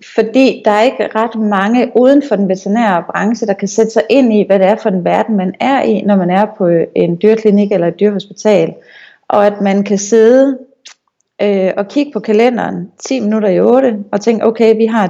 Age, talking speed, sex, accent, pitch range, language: 30-49, 215 wpm, female, native, 205-245 Hz, Danish